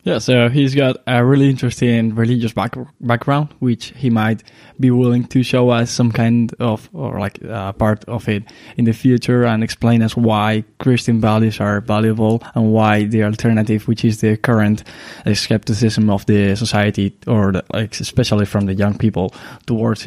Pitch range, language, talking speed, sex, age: 110-130 Hz, English, 180 wpm, male, 10-29